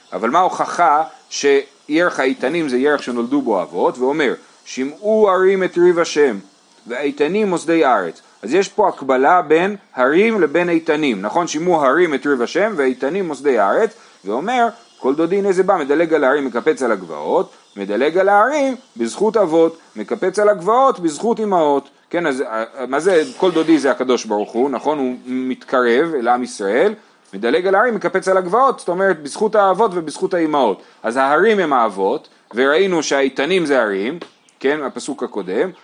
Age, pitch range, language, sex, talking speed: 30-49, 135-200 Hz, Hebrew, male, 155 wpm